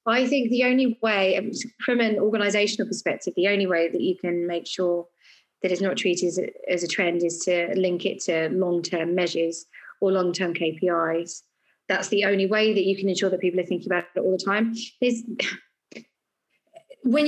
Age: 20-39